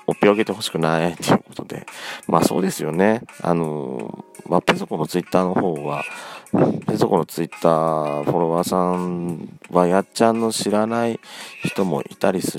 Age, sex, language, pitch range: 40-59, male, Japanese, 80-115 Hz